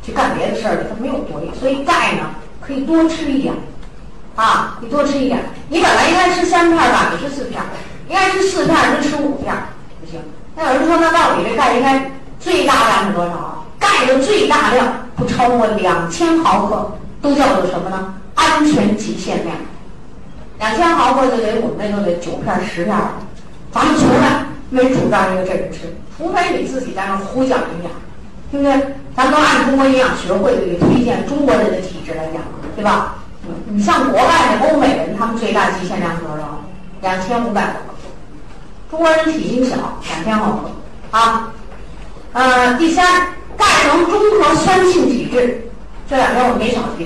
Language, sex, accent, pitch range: Chinese, female, native, 205-300 Hz